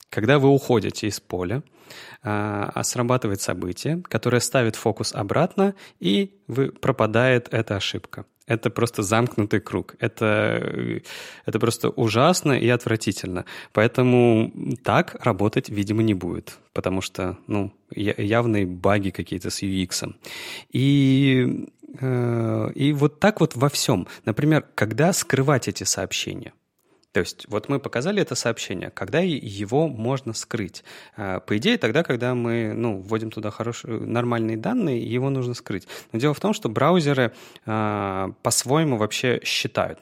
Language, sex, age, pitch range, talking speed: Russian, male, 30-49, 105-135 Hz, 130 wpm